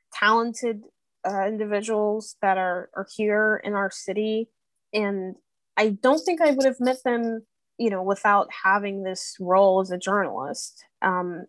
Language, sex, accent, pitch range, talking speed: English, female, American, 185-235 Hz, 150 wpm